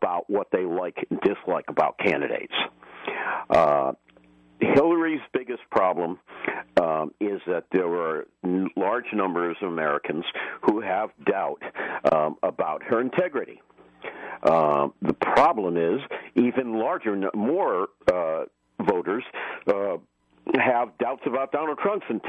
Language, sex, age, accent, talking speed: English, male, 50-69, American, 115 wpm